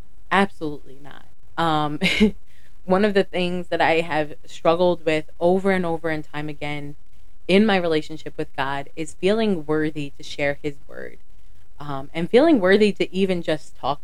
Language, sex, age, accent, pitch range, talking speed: English, female, 20-39, American, 140-165 Hz, 160 wpm